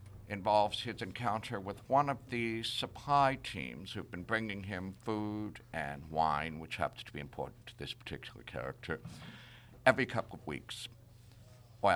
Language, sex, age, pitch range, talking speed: English, male, 60-79, 90-120 Hz, 150 wpm